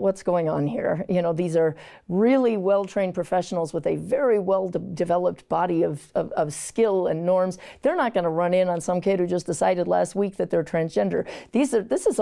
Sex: female